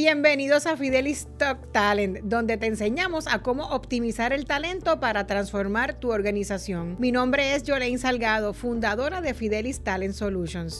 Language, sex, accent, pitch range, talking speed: English, female, American, 220-285 Hz, 150 wpm